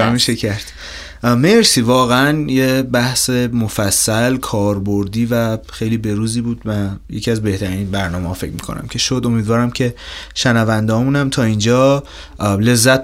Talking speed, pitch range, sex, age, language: 130 wpm, 100-135 Hz, male, 20-39, Persian